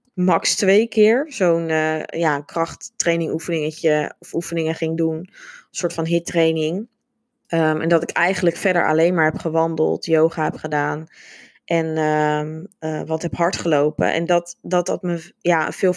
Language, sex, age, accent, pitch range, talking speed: Dutch, female, 20-39, Dutch, 165-190 Hz, 165 wpm